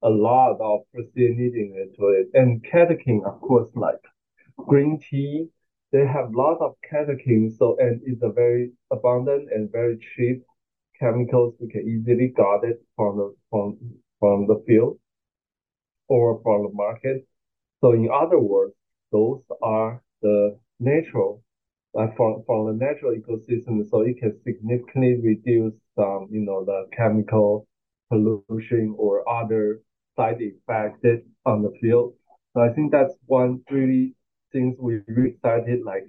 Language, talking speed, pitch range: English, 150 wpm, 110-125 Hz